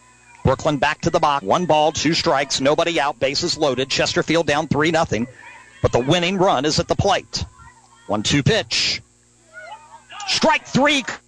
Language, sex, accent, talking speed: English, male, American, 150 wpm